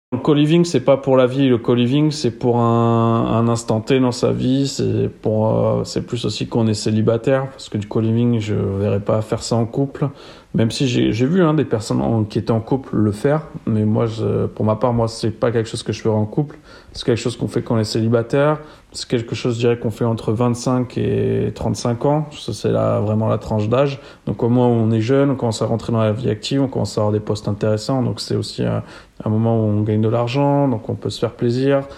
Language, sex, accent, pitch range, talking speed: French, male, French, 110-130 Hz, 255 wpm